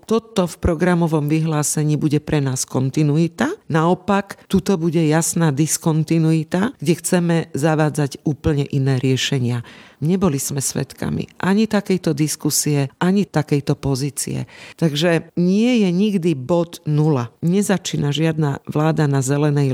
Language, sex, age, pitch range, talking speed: Slovak, female, 50-69, 150-185 Hz, 120 wpm